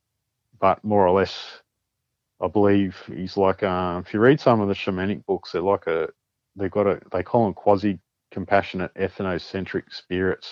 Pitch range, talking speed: 95-105 Hz, 170 wpm